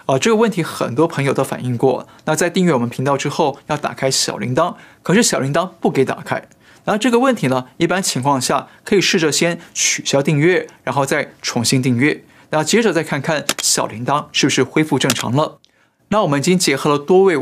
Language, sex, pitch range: Chinese, male, 130-175 Hz